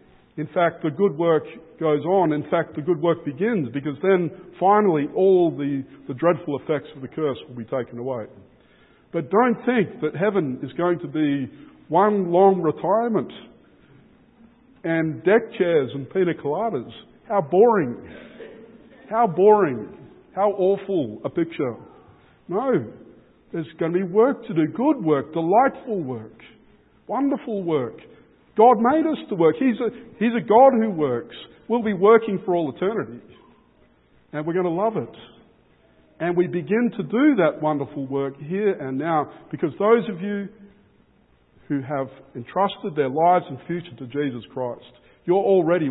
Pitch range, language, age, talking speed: 140-200 Hz, English, 50-69, 155 wpm